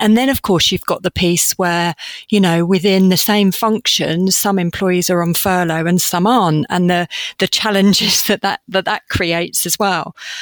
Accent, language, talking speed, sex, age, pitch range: British, English, 195 wpm, female, 40-59, 170-205 Hz